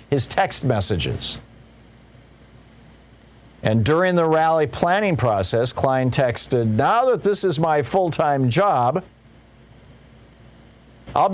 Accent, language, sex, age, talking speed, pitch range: American, English, male, 50-69, 105 wpm, 115-145 Hz